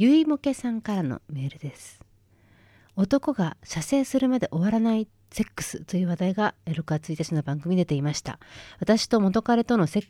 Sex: female